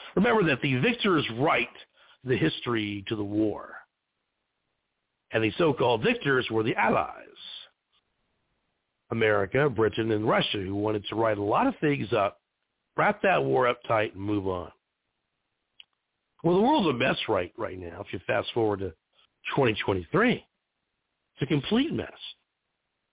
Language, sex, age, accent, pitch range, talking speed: English, male, 50-69, American, 100-130 Hz, 145 wpm